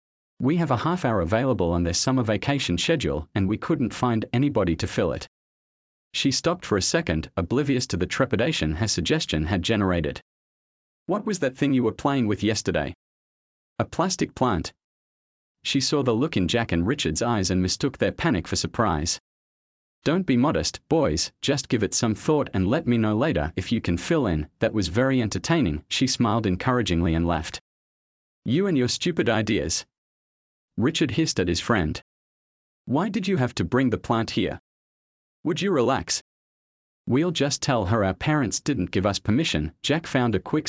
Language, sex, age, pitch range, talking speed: English, male, 40-59, 85-130 Hz, 180 wpm